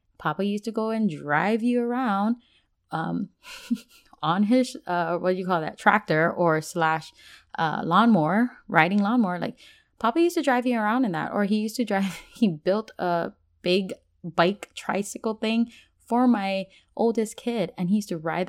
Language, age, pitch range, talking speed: English, 20-39, 180-245 Hz, 175 wpm